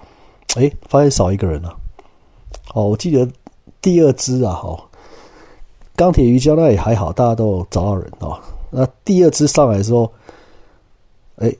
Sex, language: male, Chinese